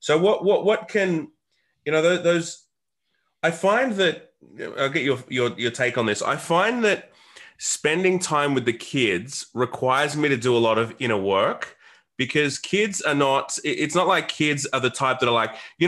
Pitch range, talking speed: 125-160 Hz, 195 wpm